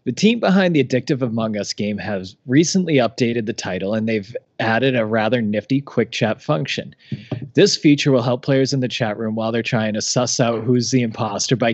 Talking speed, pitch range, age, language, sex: 210 wpm, 110-135 Hz, 30-49, English, male